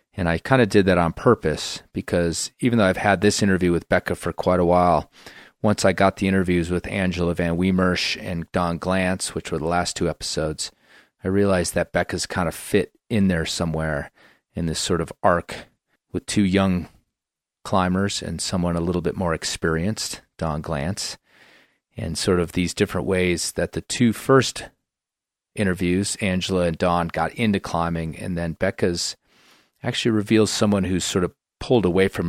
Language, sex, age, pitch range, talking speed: English, male, 30-49, 85-95 Hz, 180 wpm